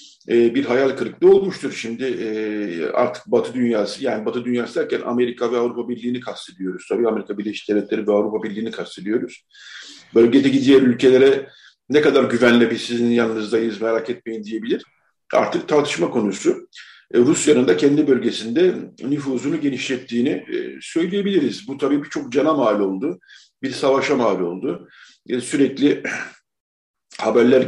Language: Turkish